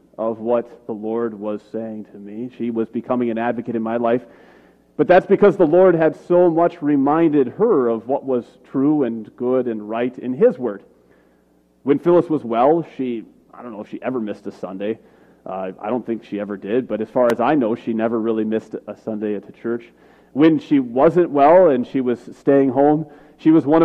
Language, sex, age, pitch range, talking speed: English, male, 30-49, 115-150 Hz, 215 wpm